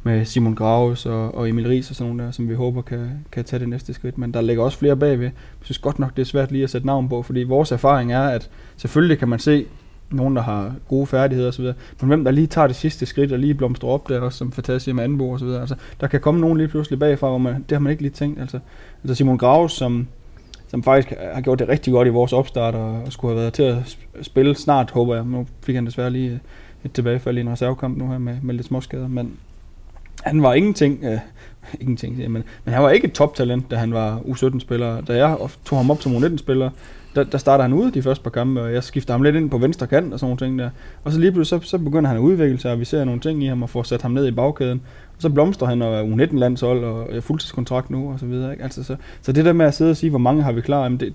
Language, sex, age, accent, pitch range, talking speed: Danish, male, 20-39, native, 120-140 Hz, 265 wpm